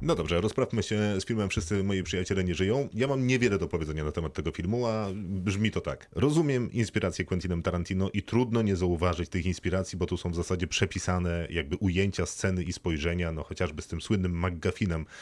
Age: 30-49